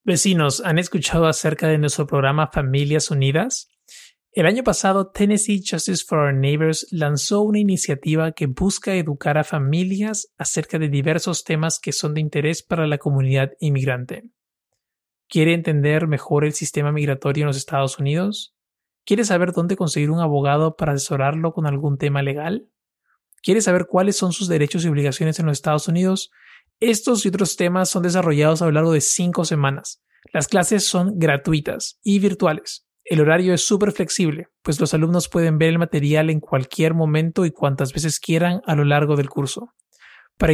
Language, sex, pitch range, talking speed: Spanish, male, 150-180 Hz, 170 wpm